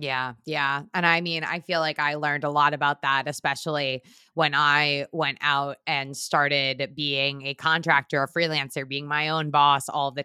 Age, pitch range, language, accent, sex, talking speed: 20-39, 150-195 Hz, English, American, female, 185 wpm